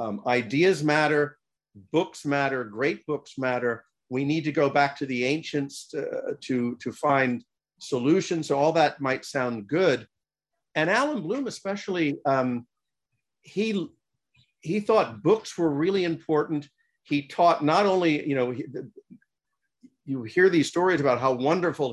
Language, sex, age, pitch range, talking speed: English, male, 50-69, 130-170 Hz, 150 wpm